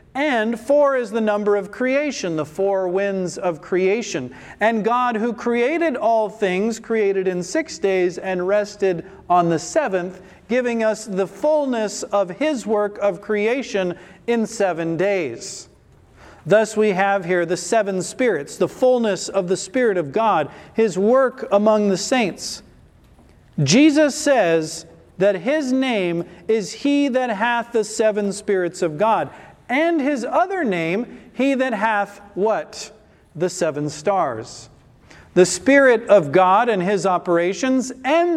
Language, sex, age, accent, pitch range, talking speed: English, male, 40-59, American, 185-250 Hz, 140 wpm